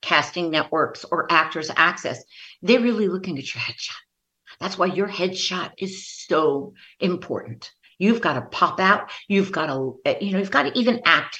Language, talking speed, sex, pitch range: English, 175 wpm, female, 150-215 Hz